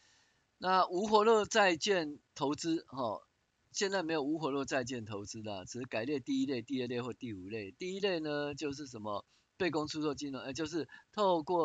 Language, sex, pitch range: Chinese, male, 110-145 Hz